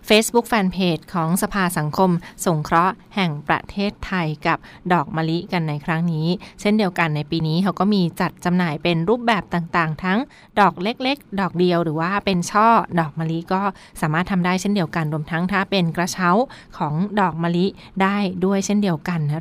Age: 20-39